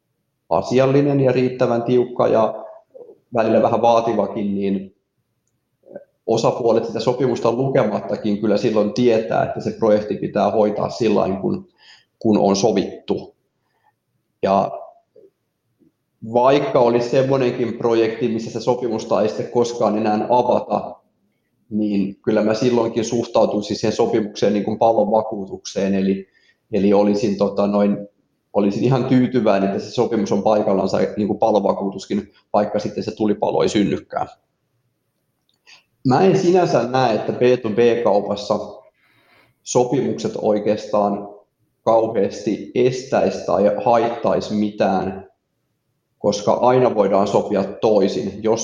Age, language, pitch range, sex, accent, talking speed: 30-49, Finnish, 105-125 Hz, male, native, 110 wpm